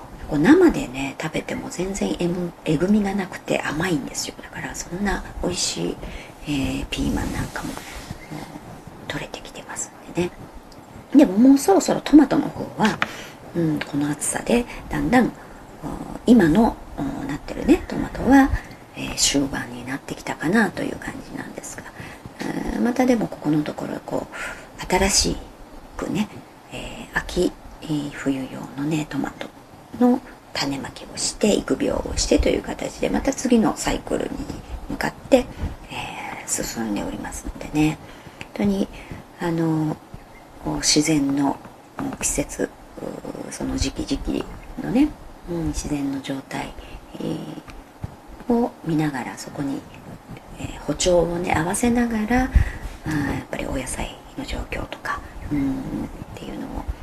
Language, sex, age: Japanese, male, 50-69